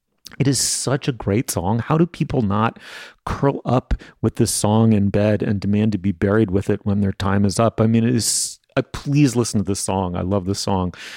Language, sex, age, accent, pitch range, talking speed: English, male, 30-49, American, 95-120 Hz, 225 wpm